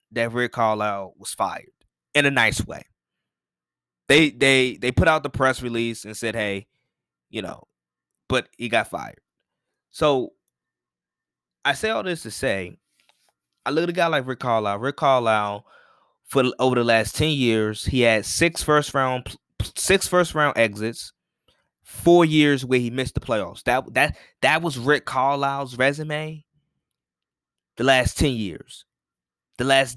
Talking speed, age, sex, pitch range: 155 wpm, 20-39, male, 100-150 Hz